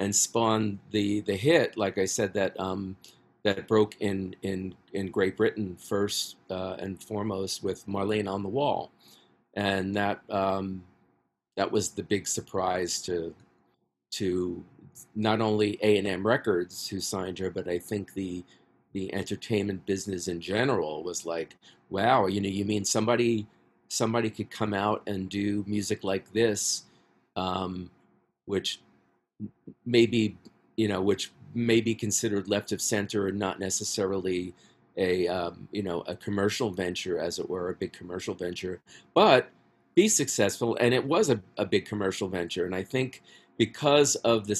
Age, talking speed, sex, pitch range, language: 40-59, 155 wpm, male, 90-105 Hz, English